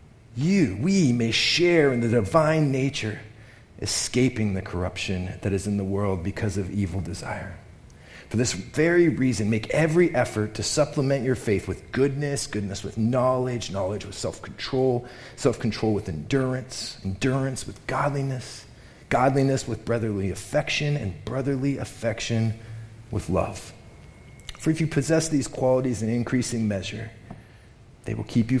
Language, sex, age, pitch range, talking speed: English, male, 40-59, 105-130 Hz, 140 wpm